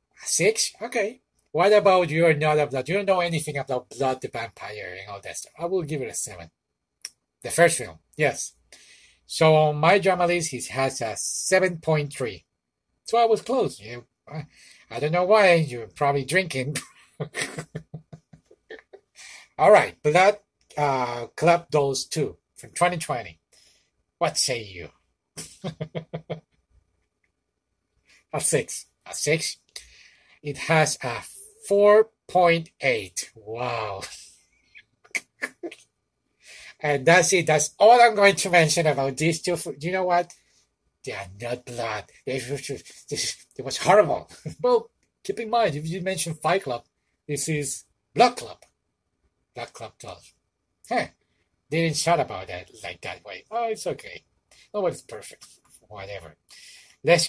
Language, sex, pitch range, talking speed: English, male, 125-180 Hz, 140 wpm